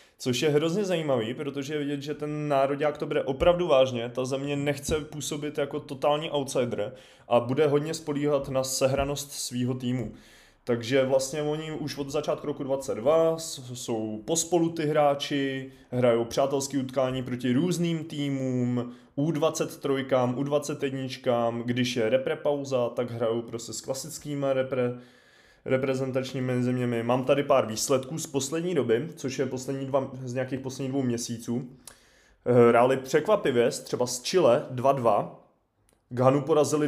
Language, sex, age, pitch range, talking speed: Czech, male, 20-39, 125-145 Hz, 140 wpm